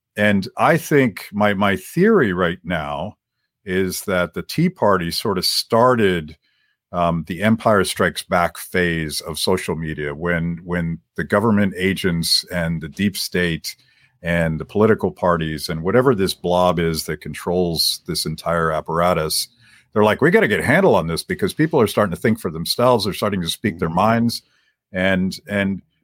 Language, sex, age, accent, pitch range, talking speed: English, male, 50-69, American, 85-115 Hz, 170 wpm